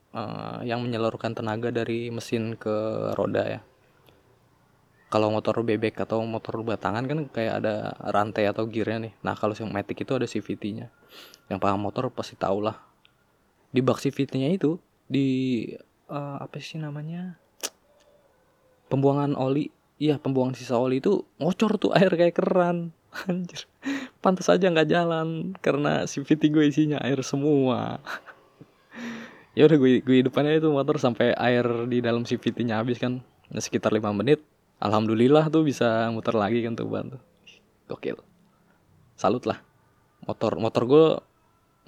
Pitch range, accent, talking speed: 115-145 Hz, native, 140 wpm